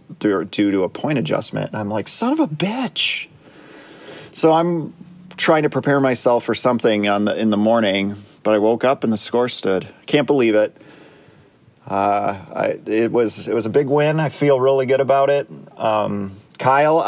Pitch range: 105-140 Hz